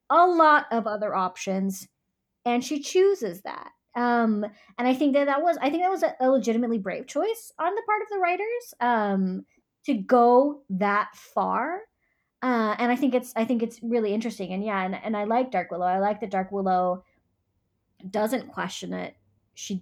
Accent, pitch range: American, 185-250 Hz